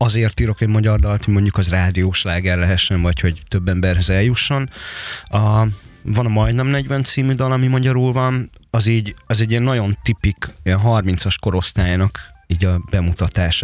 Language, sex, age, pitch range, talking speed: Hungarian, male, 20-39, 90-115 Hz, 170 wpm